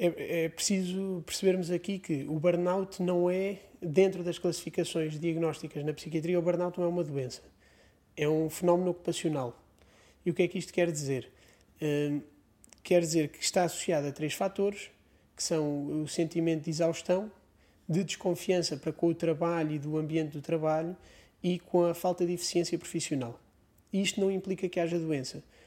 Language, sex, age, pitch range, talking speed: Portuguese, male, 20-39, 160-180 Hz, 170 wpm